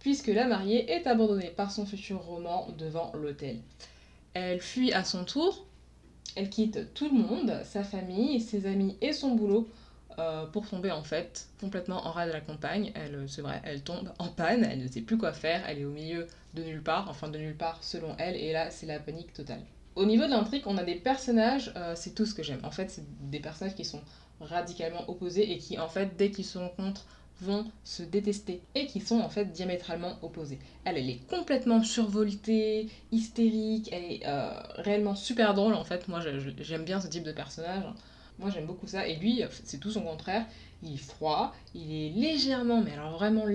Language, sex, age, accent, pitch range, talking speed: French, female, 20-39, French, 165-215 Hz, 210 wpm